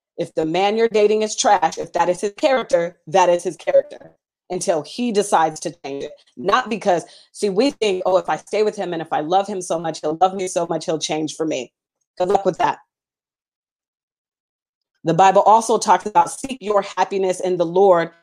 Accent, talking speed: American, 210 wpm